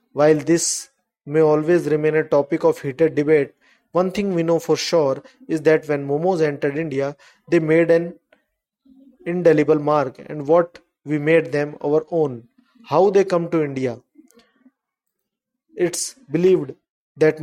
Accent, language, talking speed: native, Hindi, 145 wpm